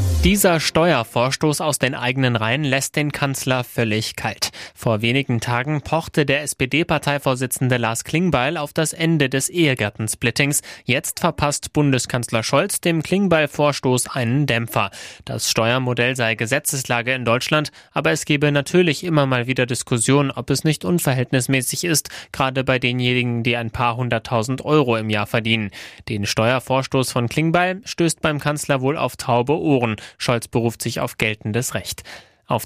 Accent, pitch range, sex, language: German, 120-150 Hz, male, German